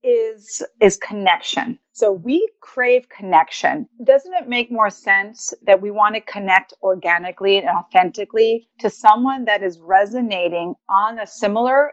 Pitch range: 195-255 Hz